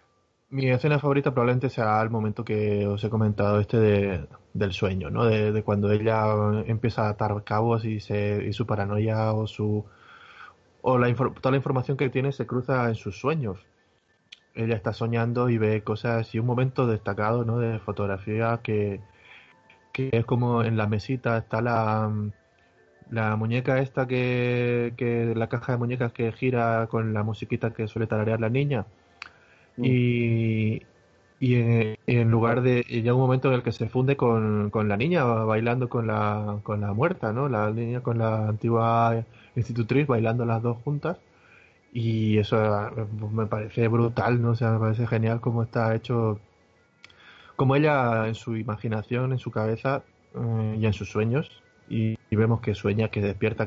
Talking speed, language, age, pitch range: 170 wpm, Spanish, 20-39, 110-120 Hz